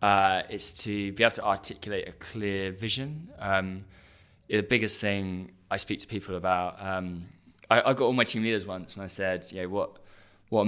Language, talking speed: English, 185 wpm